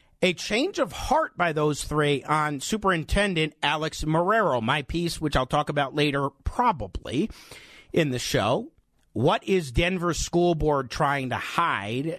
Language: English